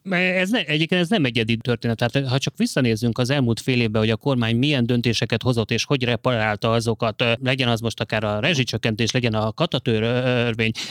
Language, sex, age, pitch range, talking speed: Hungarian, male, 30-49, 115-150 Hz, 165 wpm